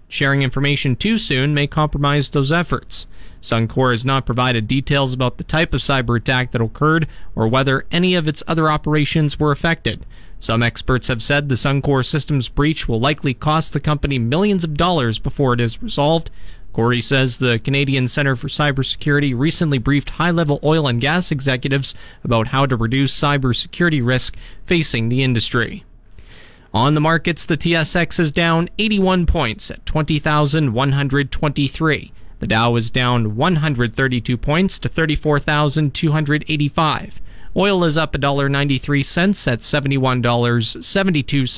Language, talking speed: English, 140 wpm